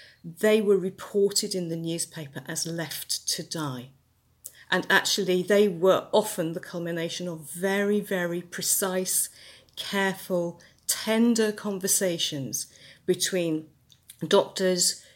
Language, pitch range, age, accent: English, 160-195 Hz, 40-59, British